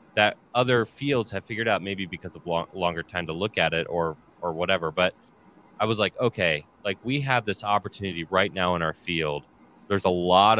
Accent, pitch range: American, 90-105 Hz